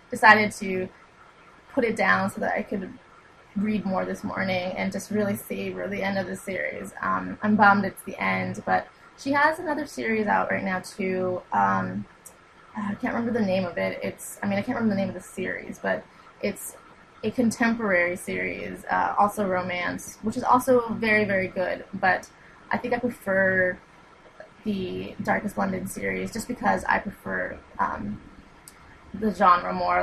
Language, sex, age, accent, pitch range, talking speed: English, female, 20-39, American, 180-230 Hz, 175 wpm